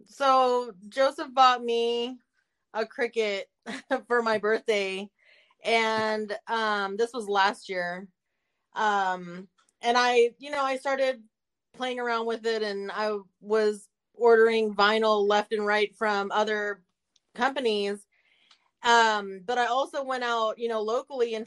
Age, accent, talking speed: 30-49, American, 130 wpm